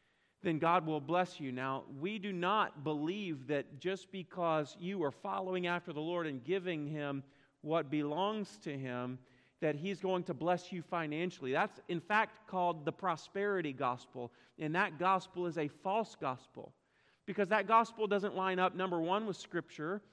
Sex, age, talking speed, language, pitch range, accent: male, 40-59, 170 wpm, English, 150-200 Hz, American